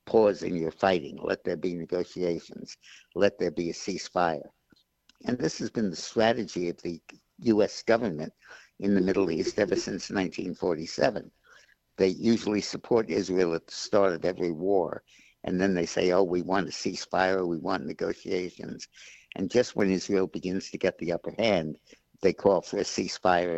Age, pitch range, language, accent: 60-79, 85-95 Hz, English, American